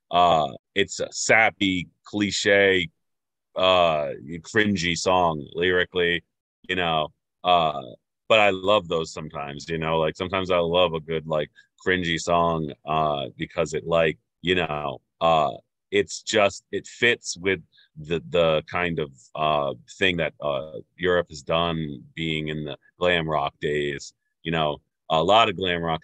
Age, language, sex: 30-49, English, male